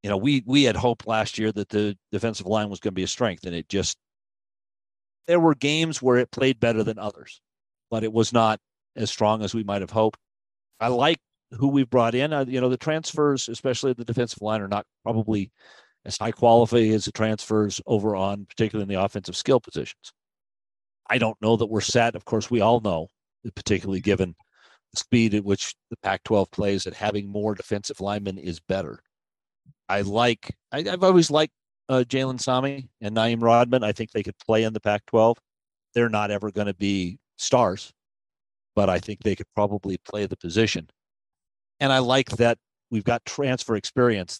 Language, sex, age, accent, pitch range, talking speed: English, male, 50-69, American, 100-120 Hz, 190 wpm